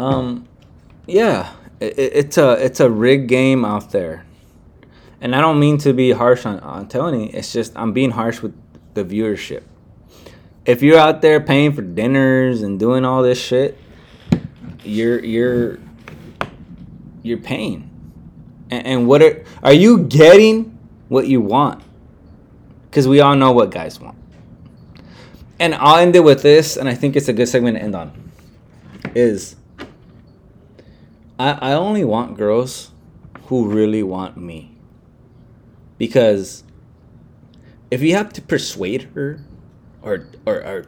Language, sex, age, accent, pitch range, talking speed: English, male, 20-39, American, 110-160 Hz, 140 wpm